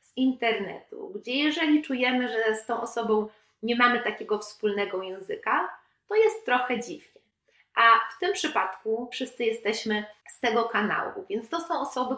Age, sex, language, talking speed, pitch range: 30-49, female, Polish, 155 wpm, 210-250 Hz